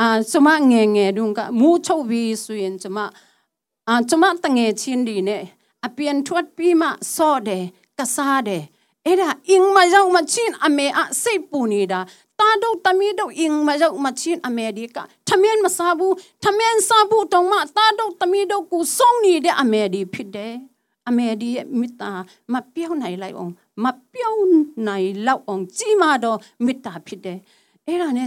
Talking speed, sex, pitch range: 40 wpm, female, 225-365 Hz